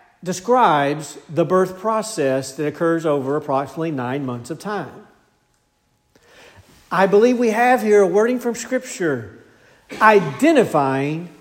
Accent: American